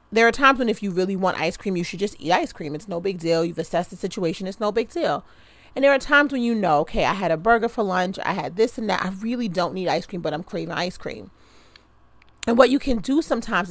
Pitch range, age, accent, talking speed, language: 165-210 Hz, 30-49, American, 280 wpm, English